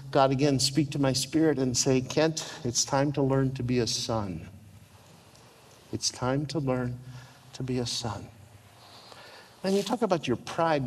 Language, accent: English, American